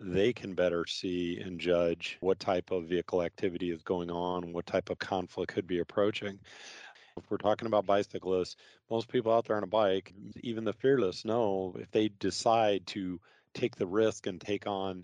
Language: English